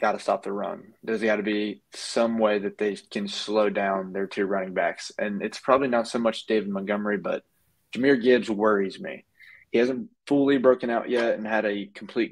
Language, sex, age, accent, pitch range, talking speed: English, male, 20-39, American, 100-115 Hz, 200 wpm